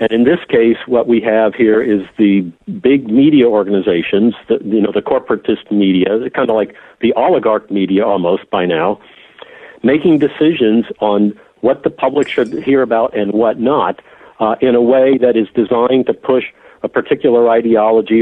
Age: 50-69